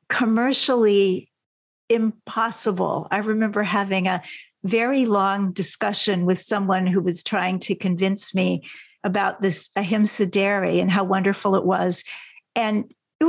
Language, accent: English, American